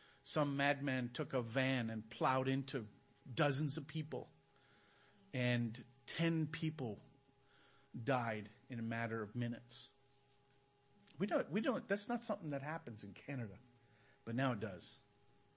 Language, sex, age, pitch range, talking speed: English, male, 50-69, 135-170 Hz, 135 wpm